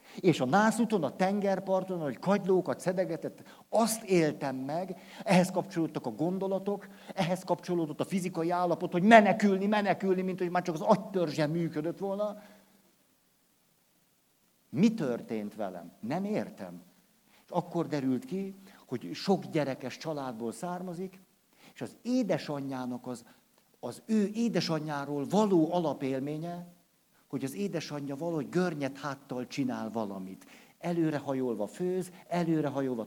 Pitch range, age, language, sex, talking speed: 150-190 Hz, 60-79, Hungarian, male, 120 wpm